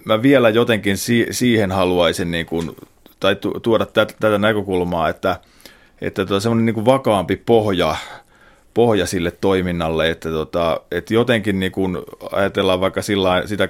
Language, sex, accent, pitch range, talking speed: Finnish, male, native, 90-105 Hz, 140 wpm